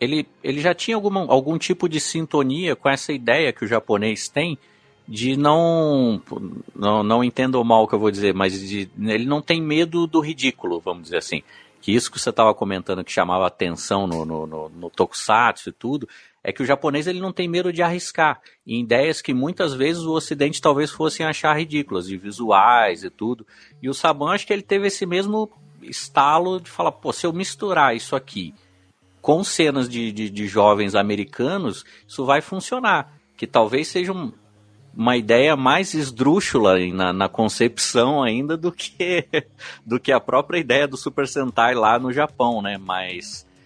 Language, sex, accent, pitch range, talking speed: Portuguese, male, Brazilian, 105-160 Hz, 180 wpm